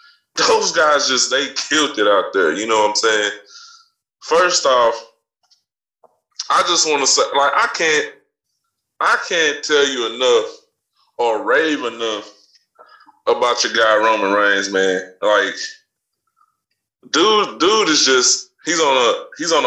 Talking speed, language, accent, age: 135 wpm, English, American, 20-39